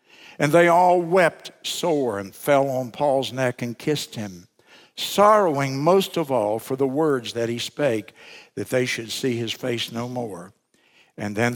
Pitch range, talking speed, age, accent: 130-170 Hz, 170 wpm, 60-79, American